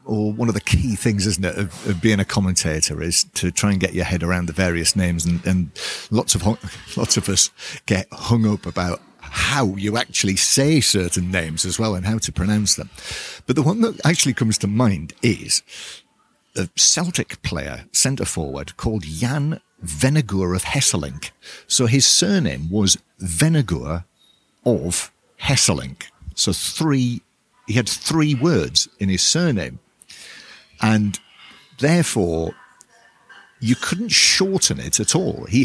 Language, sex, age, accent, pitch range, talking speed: English, male, 50-69, British, 95-135 Hz, 155 wpm